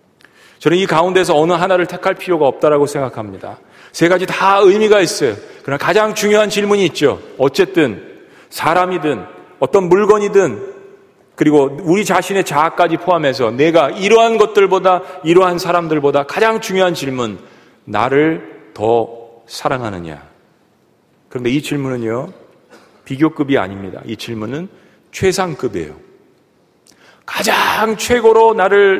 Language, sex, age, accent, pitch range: Korean, male, 40-59, native, 150-205 Hz